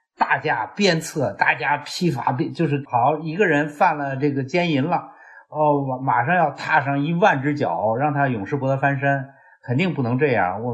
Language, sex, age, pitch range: Chinese, male, 50-69, 100-145 Hz